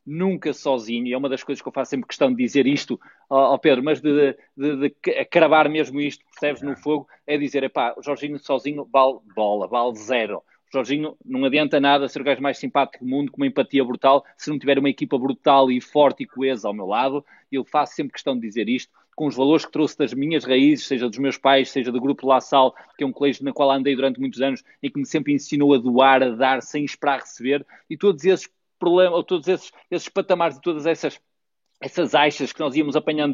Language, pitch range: Portuguese, 135-155 Hz